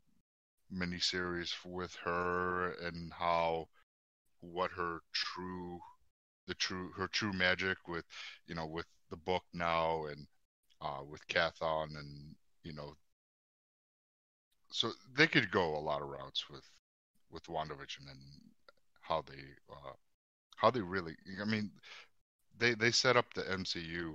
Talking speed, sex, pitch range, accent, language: 130 wpm, male, 75-95 Hz, American, English